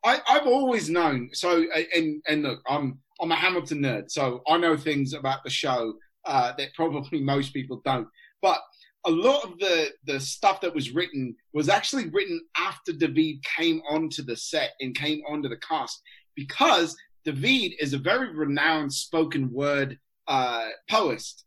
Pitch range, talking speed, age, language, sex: 150-240 Hz, 170 wpm, 30-49, English, male